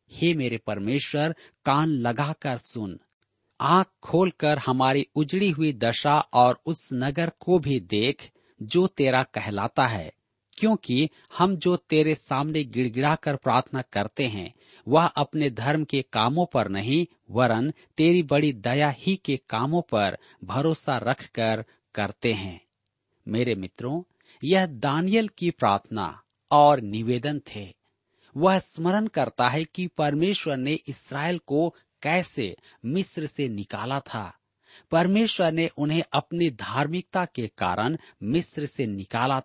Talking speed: 130 wpm